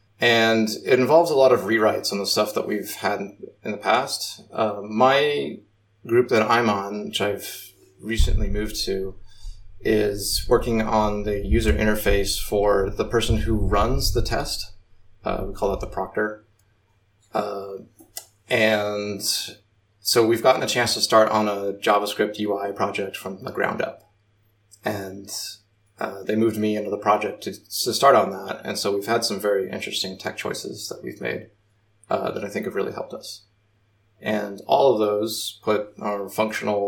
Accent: American